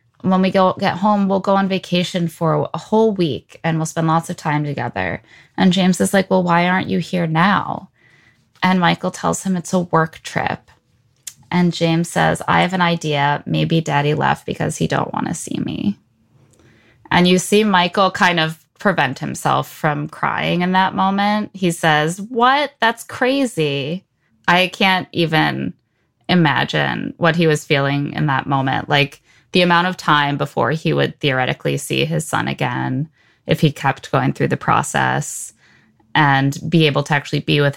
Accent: American